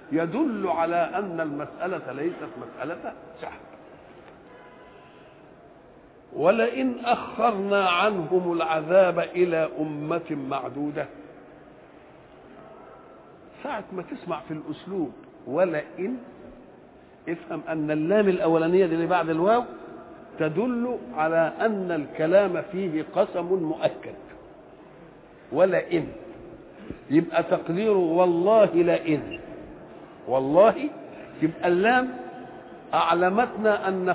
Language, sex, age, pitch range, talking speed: English, male, 50-69, 170-245 Hz, 75 wpm